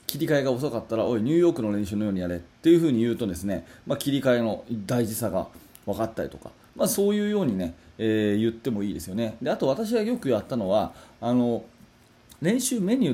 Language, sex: Japanese, male